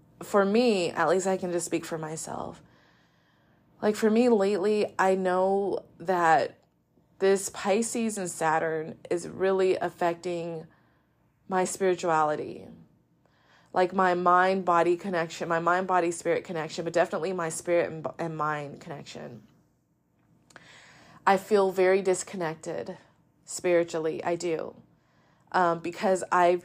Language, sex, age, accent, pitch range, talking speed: English, female, 20-39, American, 165-190 Hz, 120 wpm